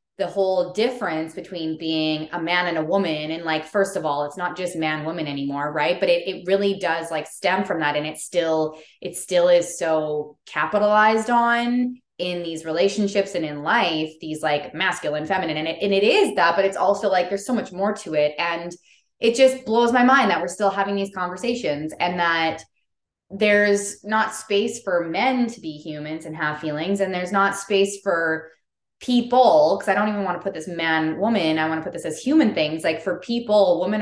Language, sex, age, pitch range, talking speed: English, female, 20-39, 155-200 Hz, 210 wpm